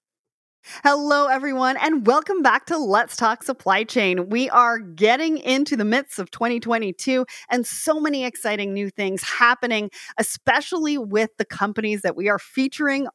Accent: American